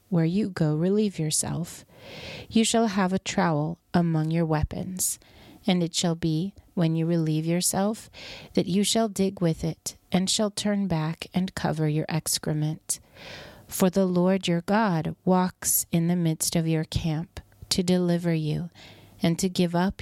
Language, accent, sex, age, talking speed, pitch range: English, American, female, 40-59, 160 wpm, 155-190 Hz